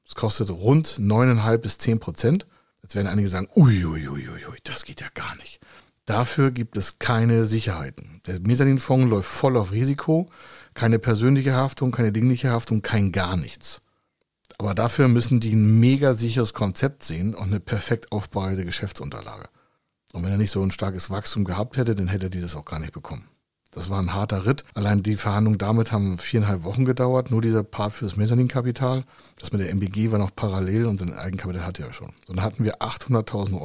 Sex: male